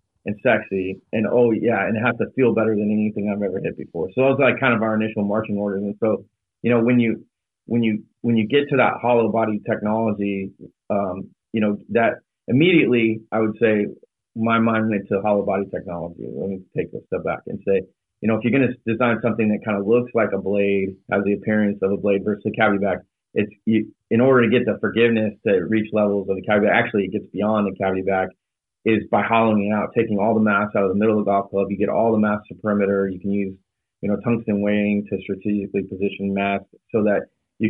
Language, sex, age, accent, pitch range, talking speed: English, male, 30-49, American, 100-115 Hz, 240 wpm